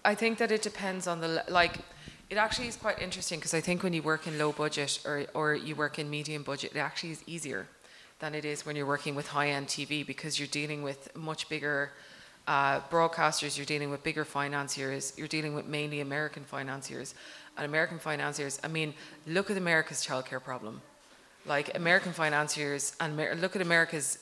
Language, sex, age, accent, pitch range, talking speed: English, female, 20-39, Irish, 145-170 Hz, 195 wpm